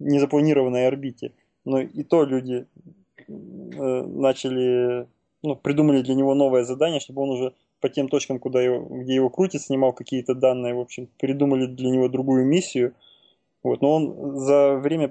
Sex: male